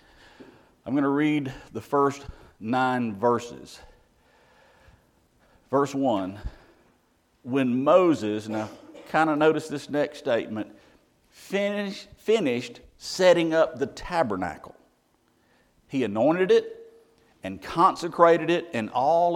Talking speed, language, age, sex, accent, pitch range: 100 wpm, English, 50-69, male, American, 125-165 Hz